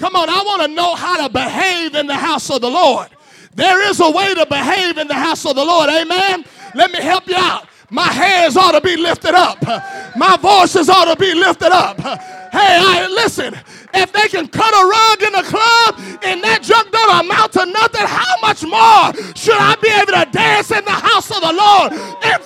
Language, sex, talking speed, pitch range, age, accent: English, male, 220 wpm, 345-445 Hz, 30-49, American